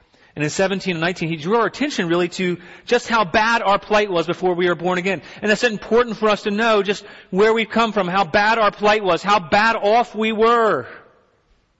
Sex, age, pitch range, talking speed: male, 40-59, 145-200 Hz, 225 wpm